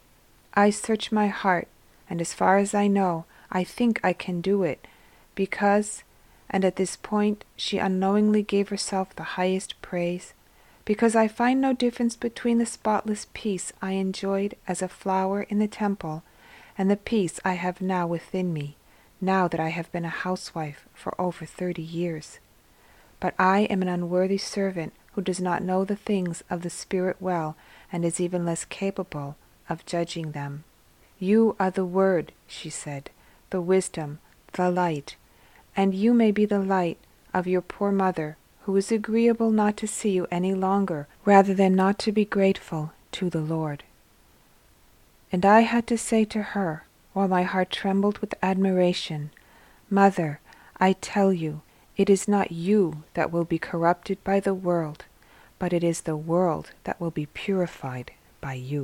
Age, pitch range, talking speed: 40-59, 170-200 Hz, 170 wpm